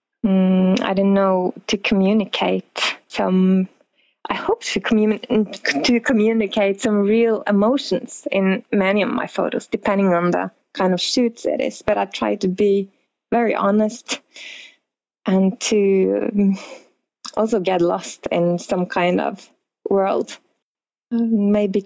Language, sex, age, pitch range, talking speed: English, female, 20-39, 190-220 Hz, 125 wpm